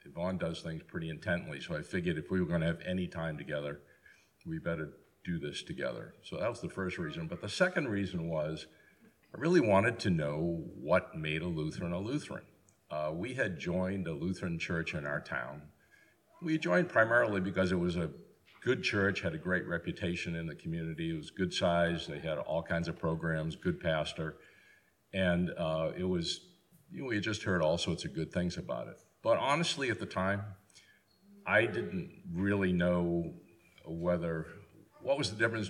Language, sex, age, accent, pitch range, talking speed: English, male, 50-69, American, 80-105 Hz, 185 wpm